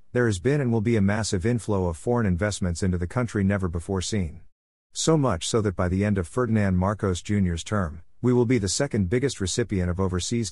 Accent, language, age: American, English, 50-69